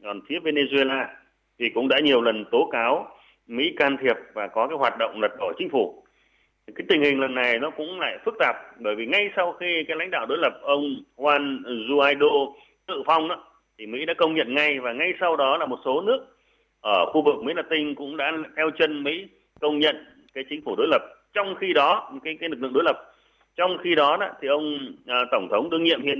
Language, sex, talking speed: Vietnamese, male, 230 wpm